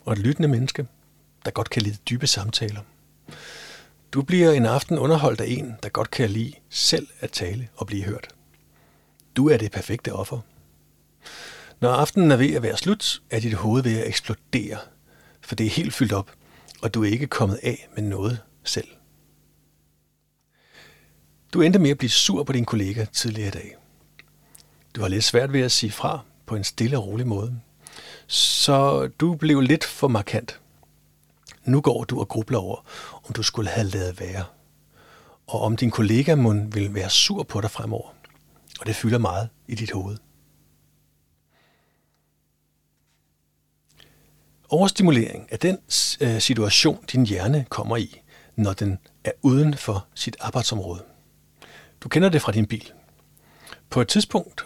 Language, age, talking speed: Danish, 60-79, 160 wpm